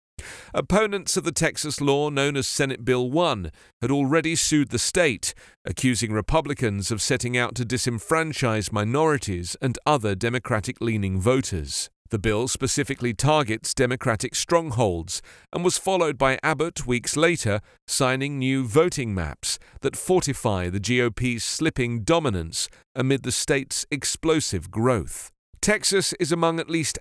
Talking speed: 135 wpm